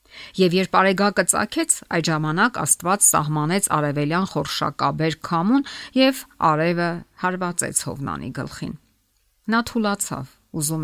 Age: 50-69